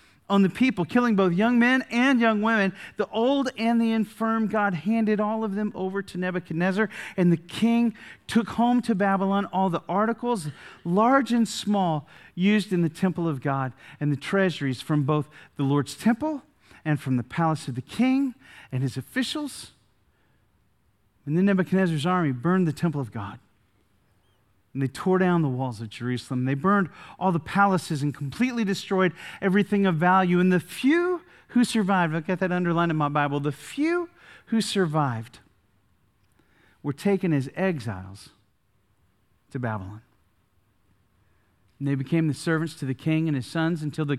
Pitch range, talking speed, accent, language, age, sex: 135-200 Hz, 165 wpm, American, English, 40-59, male